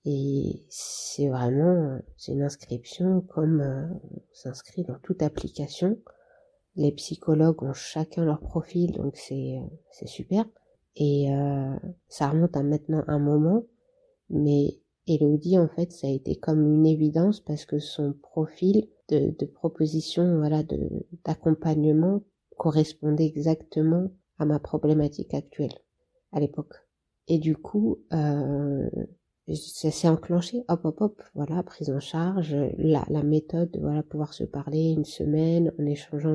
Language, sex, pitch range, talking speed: French, female, 150-180 Hz, 140 wpm